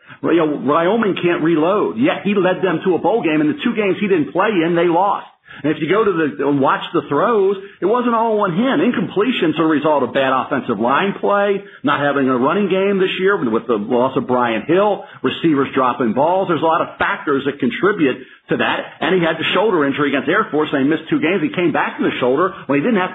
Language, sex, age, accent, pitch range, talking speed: English, male, 50-69, American, 150-190 Hz, 240 wpm